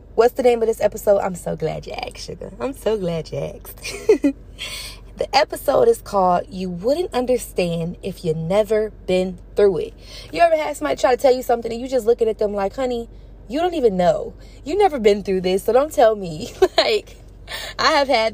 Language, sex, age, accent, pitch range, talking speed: English, female, 20-39, American, 175-245 Hz, 210 wpm